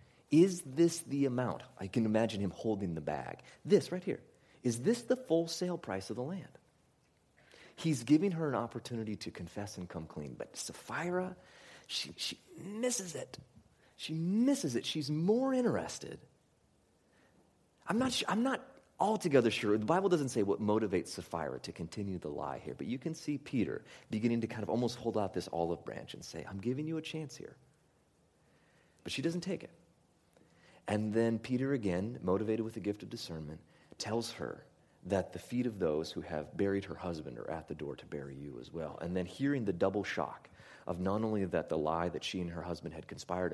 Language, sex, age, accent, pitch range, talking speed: English, male, 30-49, American, 90-150 Hz, 195 wpm